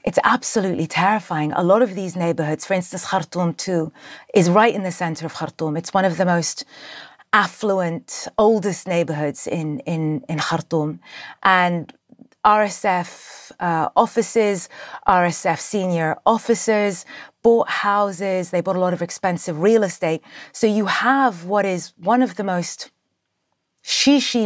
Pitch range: 170-210 Hz